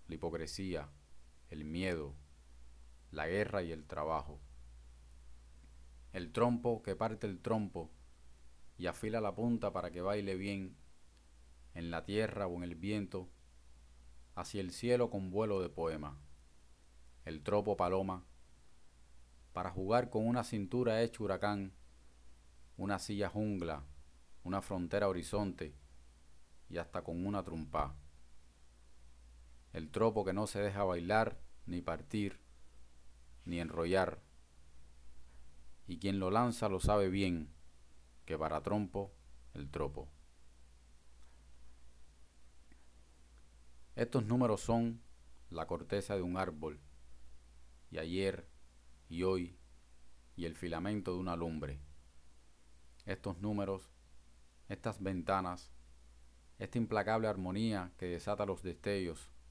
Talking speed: 110 wpm